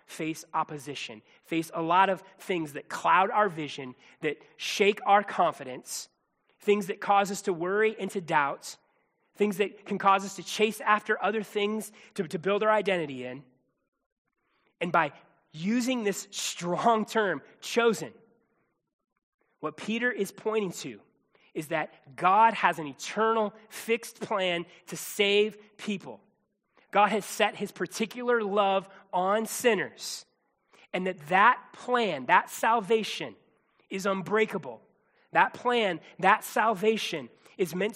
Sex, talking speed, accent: male, 135 wpm, American